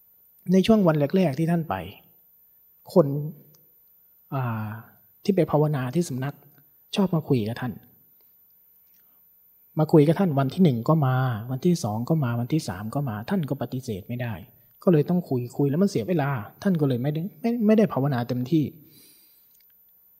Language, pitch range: Thai, 120-170 Hz